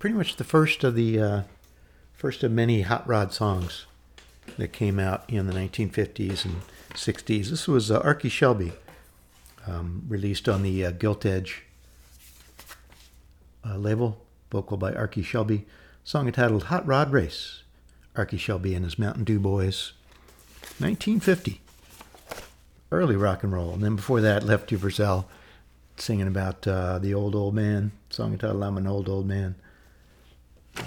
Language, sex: English, male